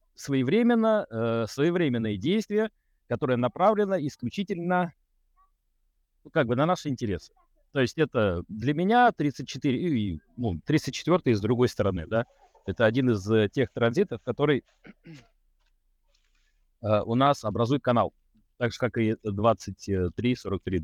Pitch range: 115-160 Hz